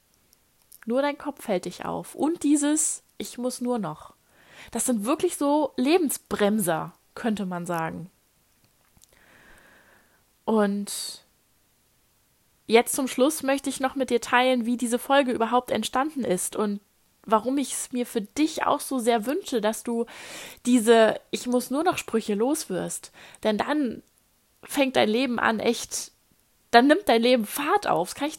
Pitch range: 215-270 Hz